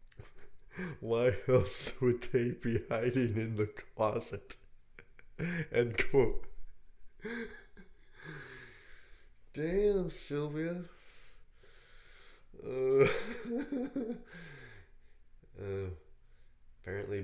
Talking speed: 55 wpm